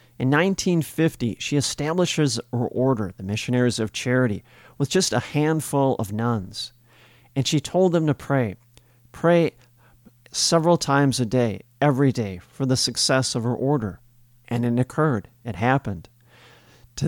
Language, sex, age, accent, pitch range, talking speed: English, male, 40-59, American, 120-145 Hz, 145 wpm